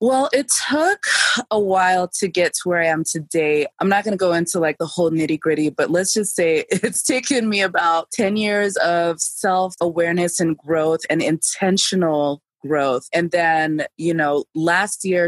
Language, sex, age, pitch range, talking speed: English, female, 20-39, 160-190 Hz, 180 wpm